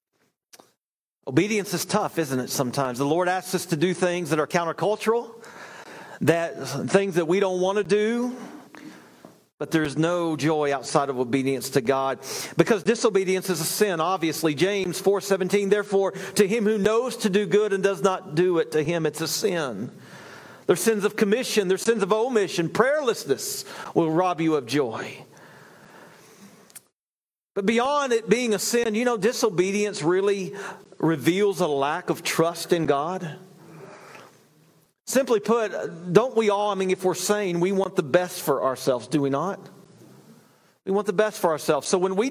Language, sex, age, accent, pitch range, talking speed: English, male, 40-59, American, 170-215 Hz, 170 wpm